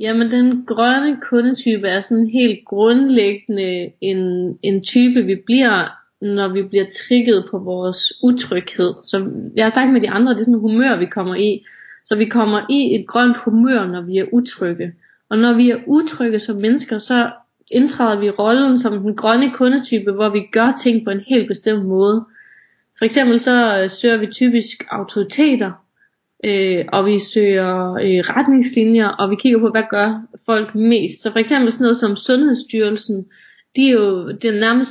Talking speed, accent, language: 170 wpm, native, Danish